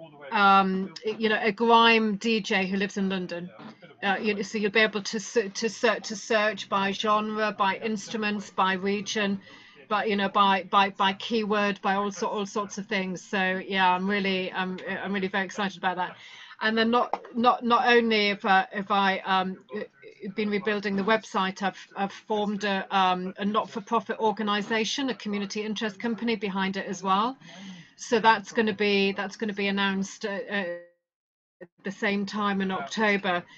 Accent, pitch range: British, 195-220 Hz